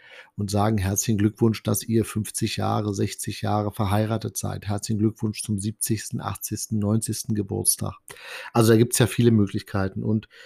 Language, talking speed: German, 155 wpm